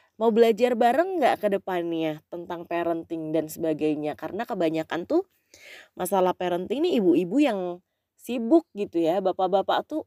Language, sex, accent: English, female, Indonesian